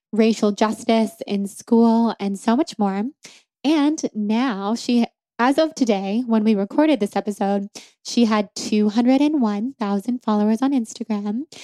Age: 10-29